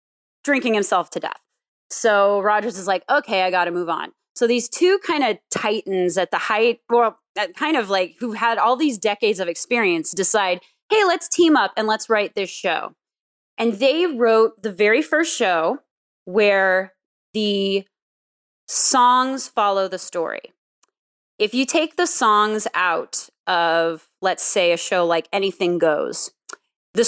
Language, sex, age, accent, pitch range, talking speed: English, female, 20-39, American, 190-255 Hz, 155 wpm